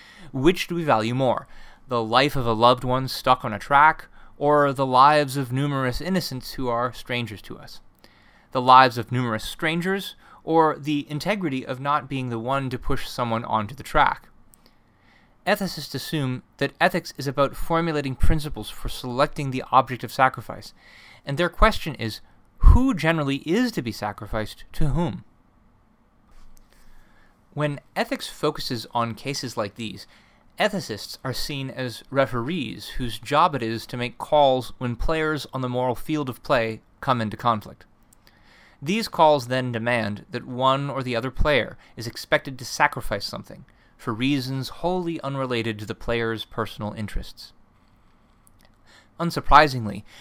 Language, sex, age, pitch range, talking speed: English, male, 20-39, 115-150 Hz, 150 wpm